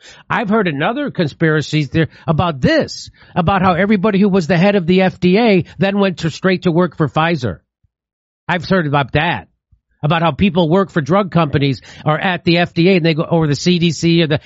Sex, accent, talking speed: male, American, 200 wpm